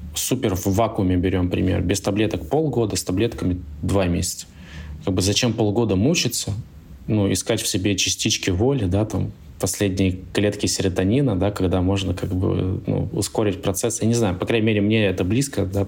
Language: Russian